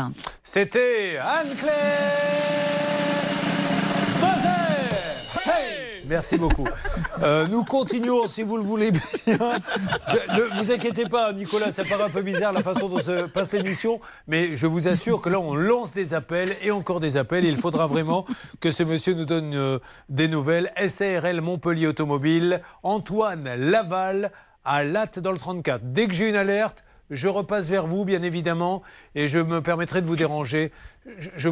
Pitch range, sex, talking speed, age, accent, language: 155-200 Hz, male, 155 wpm, 40-59, French, French